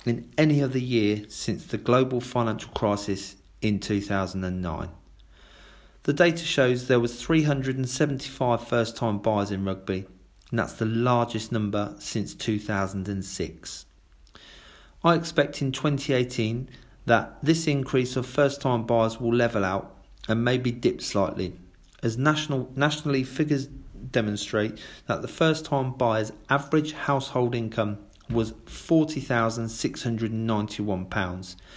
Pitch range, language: 105-135 Hz, English